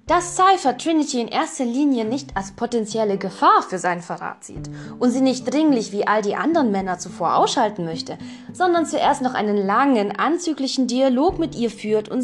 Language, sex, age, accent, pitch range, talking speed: German, female, 20-39, German, 200-260 Hz, 180 wpm